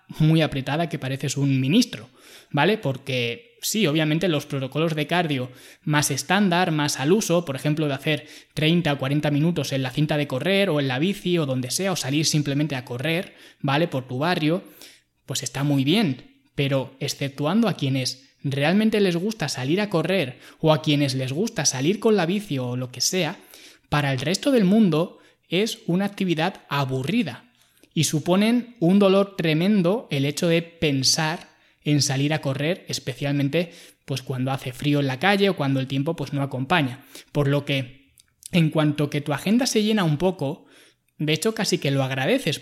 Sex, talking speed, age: male, 185 wpm, 20-39